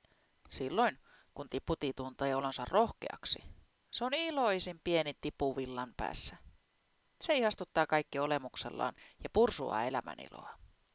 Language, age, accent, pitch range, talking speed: Finnish, 40-59, native, 135-225 Hz, 105 wpm